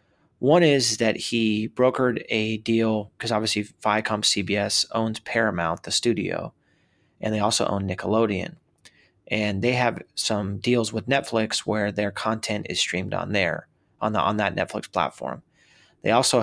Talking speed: 155 wpm